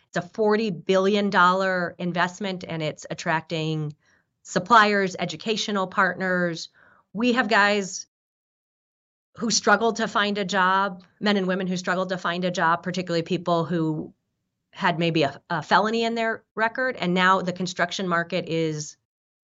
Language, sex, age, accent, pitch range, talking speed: English, female, 30-49, American, 165-195 Hz, 140 wpm